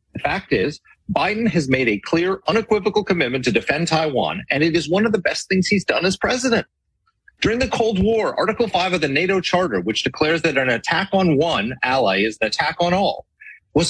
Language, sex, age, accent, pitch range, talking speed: English, male, 40-59, American, 135-195 Hz, 210 wpm